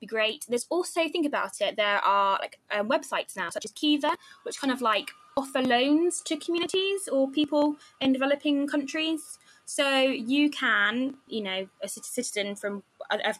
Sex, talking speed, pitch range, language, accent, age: female, 170 wpm, 215-290 Hz, English, British, 20-39